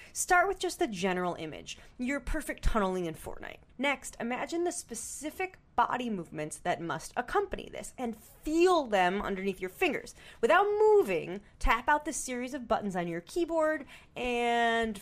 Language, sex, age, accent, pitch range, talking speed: English, female, 30-49, American, 200-310 Hz, 155 wpm